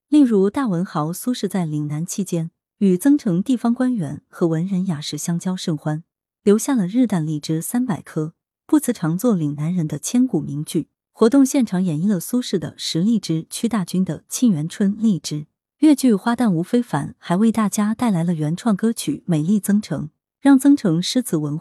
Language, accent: Chinese, native